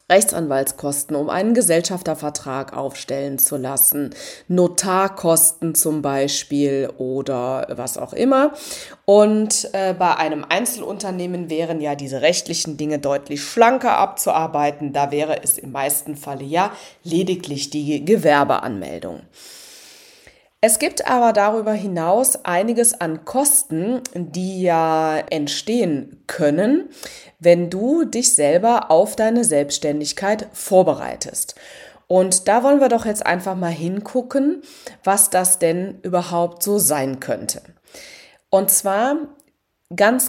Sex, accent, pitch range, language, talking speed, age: female, German, 150-210 Hz, German, 115 wpm, 20-39